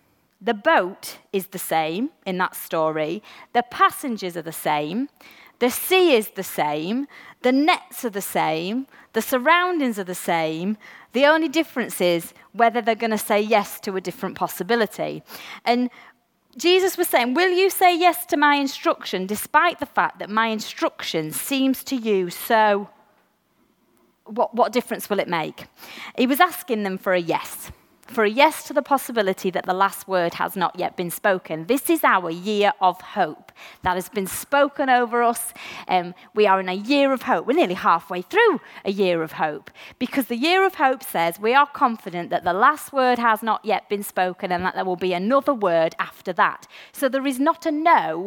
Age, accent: 30-49, British